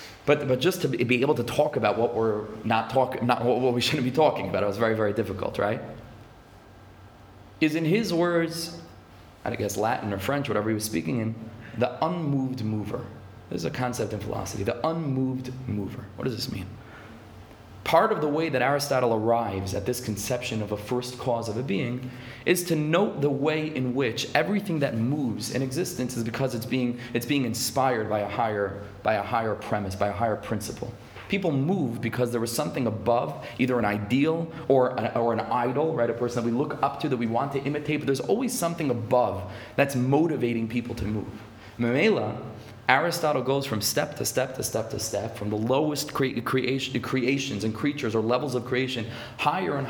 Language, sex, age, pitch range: English, male, 30-49, 115-150 Hz